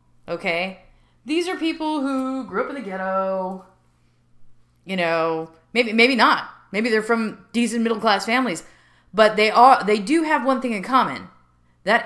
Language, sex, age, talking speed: English, female, 30-49, 165 wpm